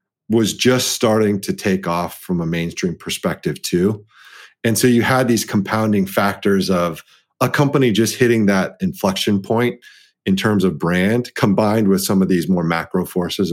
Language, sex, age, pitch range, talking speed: English, male, 40-59, 95-125 Hz, 170 wpm